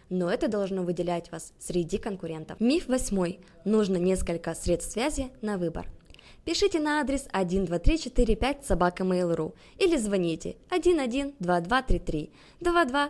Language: Russian